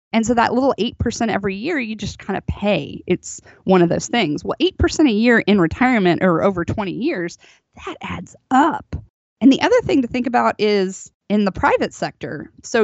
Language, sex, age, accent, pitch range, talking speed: English, female, 20-39, American, 170-210 Hz, 200 wpm